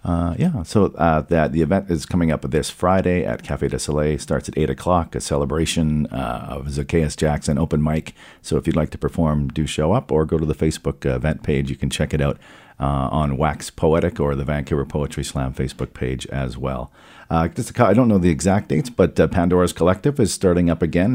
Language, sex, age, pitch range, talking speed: English, male, 50-69, 70-85 Hz, 225 wpm